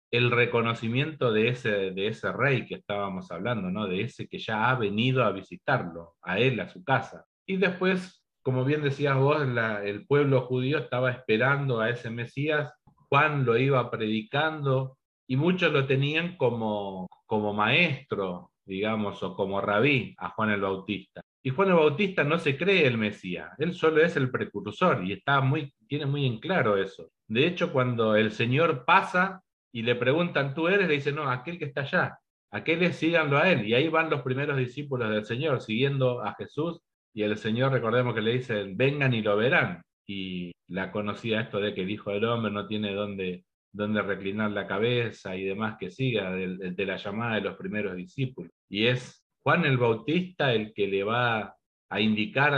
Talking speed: 190 wpm